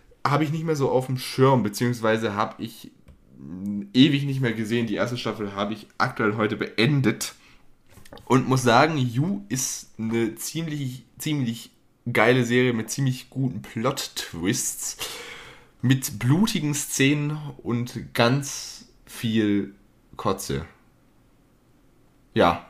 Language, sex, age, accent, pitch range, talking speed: German, male, 10-29, German, 110-135 Hz, 120 wpm